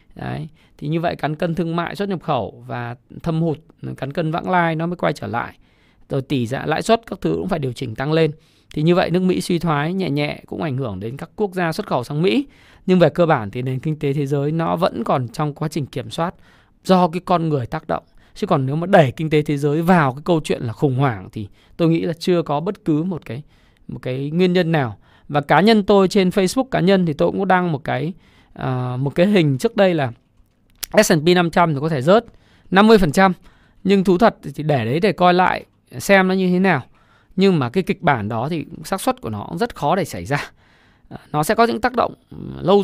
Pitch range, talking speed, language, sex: 140-190 Hz, 250 wpm, Vietnamese, male